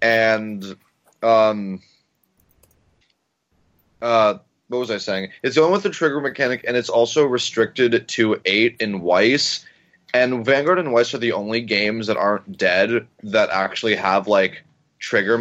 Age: 20-39